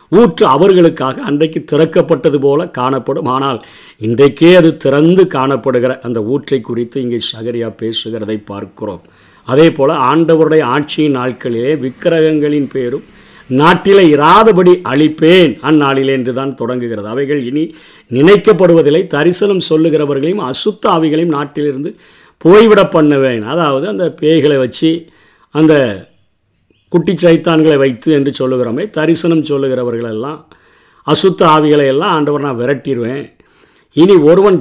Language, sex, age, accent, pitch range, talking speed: Tamil, male, 50-69, native, 130-170 Hz, 105 wpm